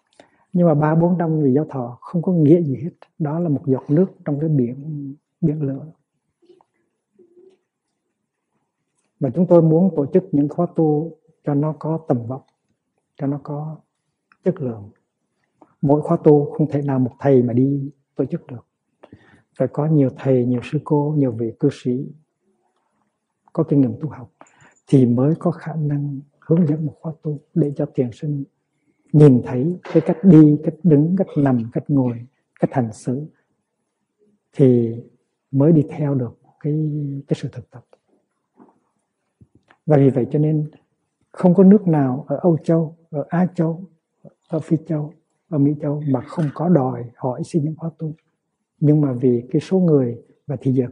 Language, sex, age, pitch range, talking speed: Vietnamese, male, 60-79, 135-165 Hz, 175 wpm